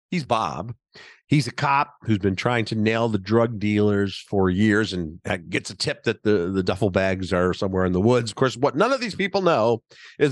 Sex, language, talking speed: male, English, 220 wpm